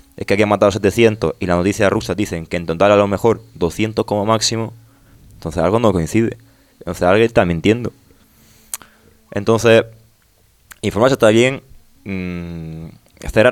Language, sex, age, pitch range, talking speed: Spanish, male, 20-39, 90-110 Hz, 155 wpm